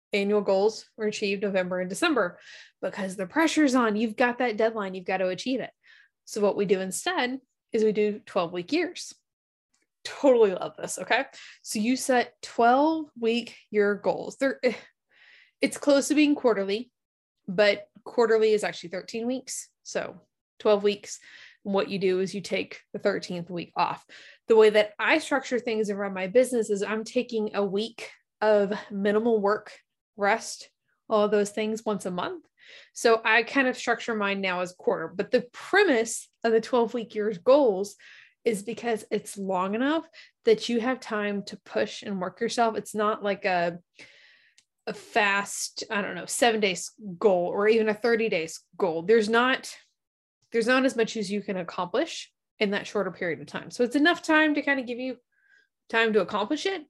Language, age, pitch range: English, 20-39, 200-250 Hz